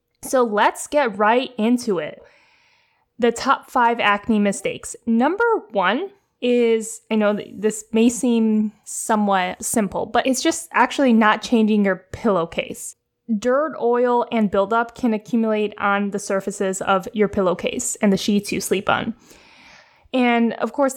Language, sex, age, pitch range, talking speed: English, female, 10-29, 205-270 Hz, 145 wpm